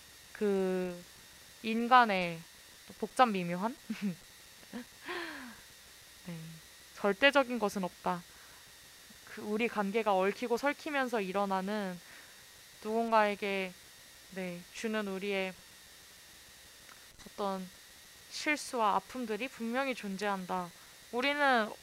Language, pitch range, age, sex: Korean, 190-255 Hz, 20-39, female